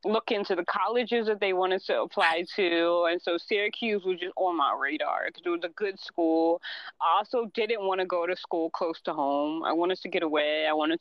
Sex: female